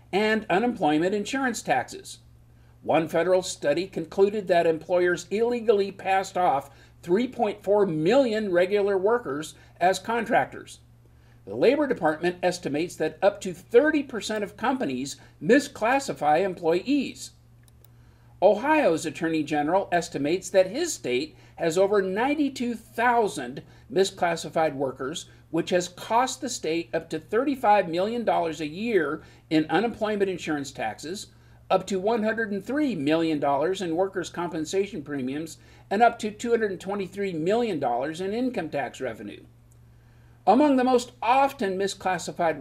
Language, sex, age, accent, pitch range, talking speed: English, male, 50-69, American, 150-215 Hz, 115 wpm